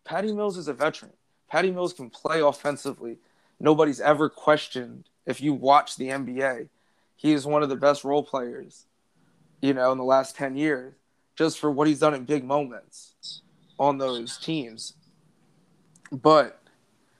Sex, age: male, 20-39